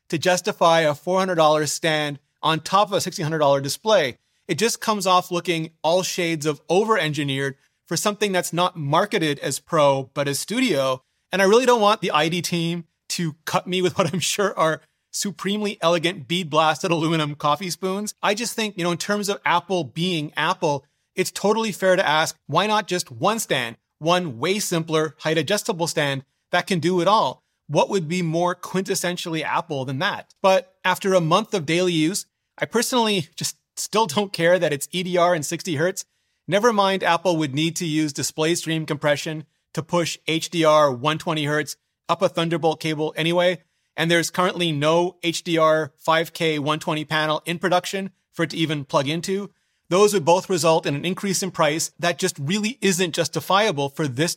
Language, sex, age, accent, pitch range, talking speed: English, male, 30-49, American, 155-185 Hz, 180 wpm